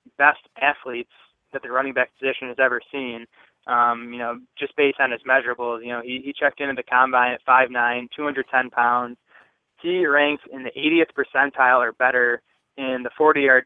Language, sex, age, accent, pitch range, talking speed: English, male, 20-39, American, 120-135 Hz, 180 wpm